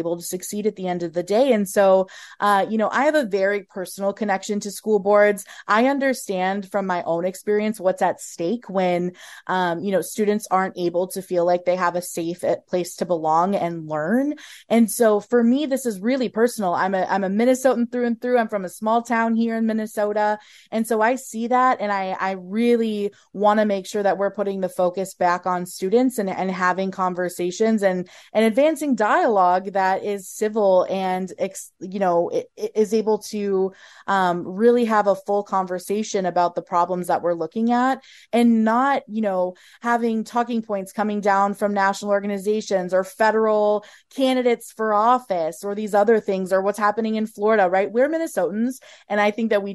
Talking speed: 195 wpm